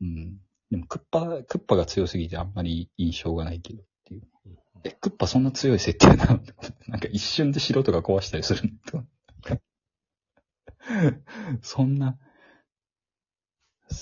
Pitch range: 85-115 Hz